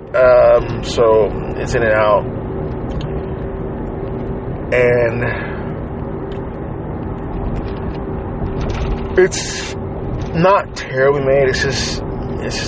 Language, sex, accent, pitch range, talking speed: English, male, American, 80-125 Hz, 70 wpm